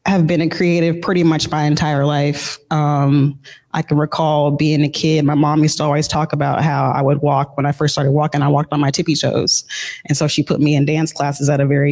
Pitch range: 145-170 Hz